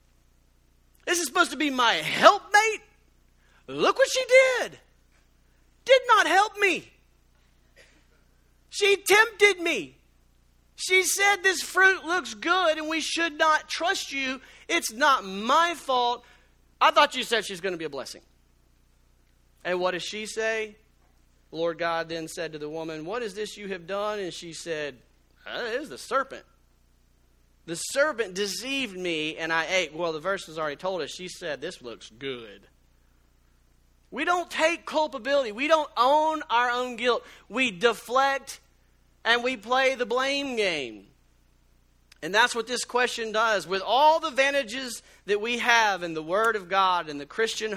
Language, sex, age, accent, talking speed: English, male, 40-59, American, 160 wpm